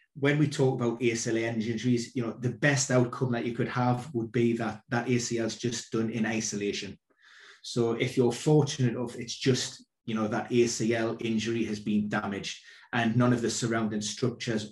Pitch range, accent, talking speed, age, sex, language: 115-130 Hz, British, 190 wpm, 30-49, male, English